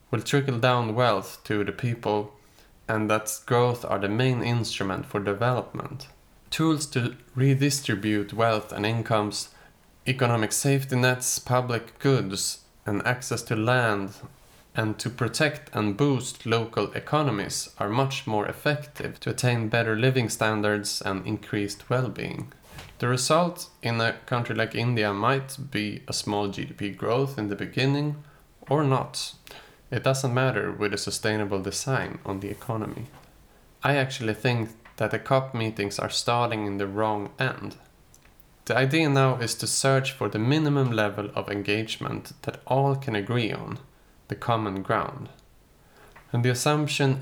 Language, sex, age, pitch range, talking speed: Swedish, male, 20-39, 105-135 Hz, 145 wpm